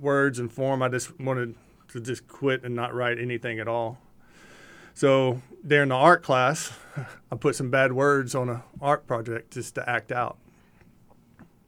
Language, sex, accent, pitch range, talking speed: English, male, American, 125-145 Hz, 170 wpm